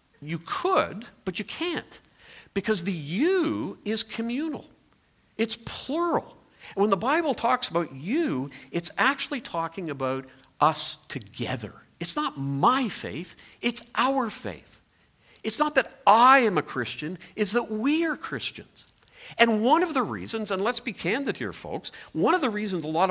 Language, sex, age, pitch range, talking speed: English, male, 50-69, 175-245 Hz, 155 wpm